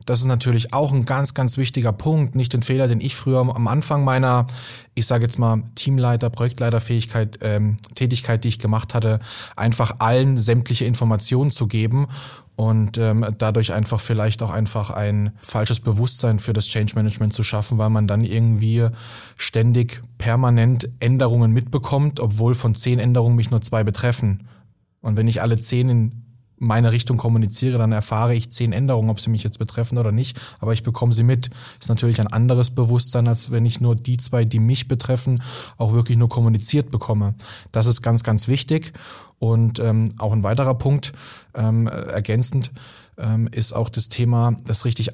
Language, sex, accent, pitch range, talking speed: German, male, German, 110-125 Hz, 180 wpm